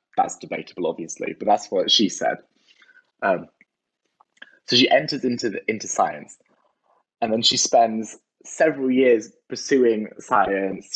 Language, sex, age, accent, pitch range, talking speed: English, male, 20-39, British, 105-170 Hz, 125 wpm